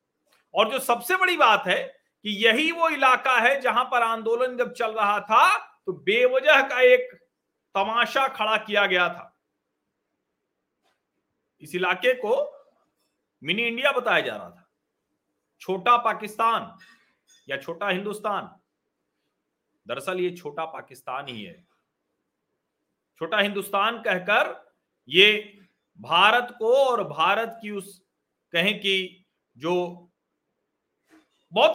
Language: Hindi